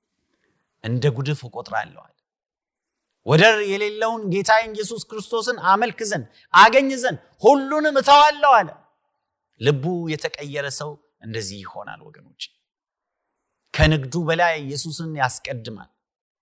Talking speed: 95 wpm